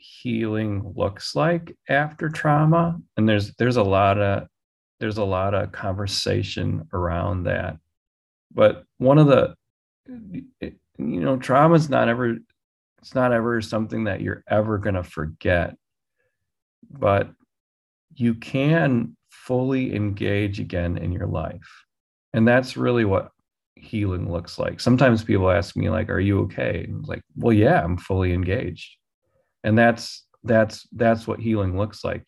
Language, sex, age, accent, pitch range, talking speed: English, male, 30-49, American, 95-115 Hz, 140 wpm